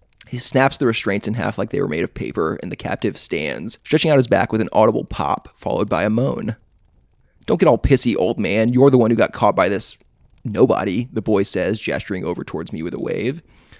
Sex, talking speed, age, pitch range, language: male, 230 wpm, 20-39, 105-125 Hz, English